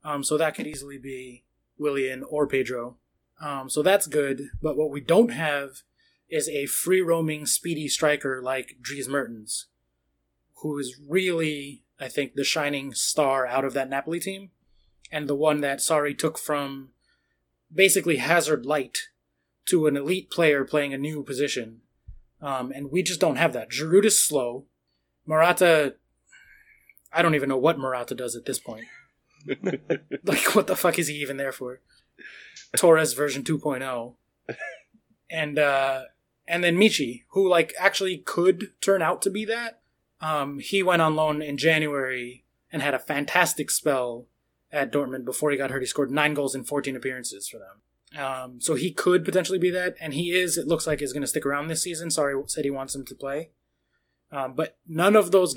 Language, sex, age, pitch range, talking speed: English, male, 20-39, 135-170 Hz, 175 wpm